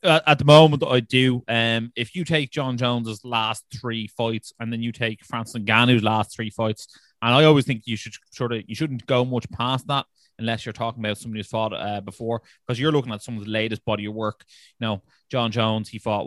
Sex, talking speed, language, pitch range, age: male, 230 wpm, English, 105-125 Hz, 20-39